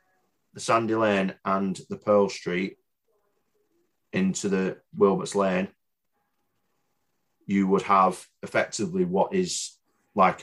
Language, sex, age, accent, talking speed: English, male, 30-49, British, 100 wpm